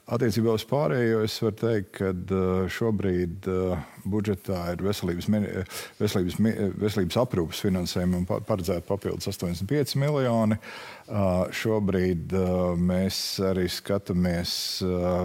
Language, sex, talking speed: English, male, 95 wpm